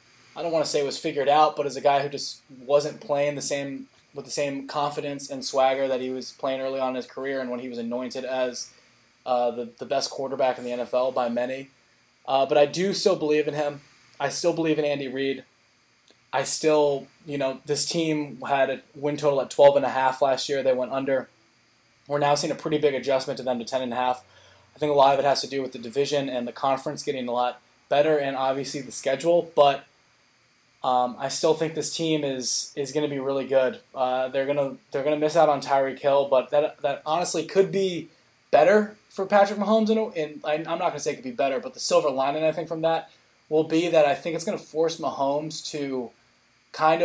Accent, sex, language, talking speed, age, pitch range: American, male, English, 225 wpm, 20-39, 130-150 Hz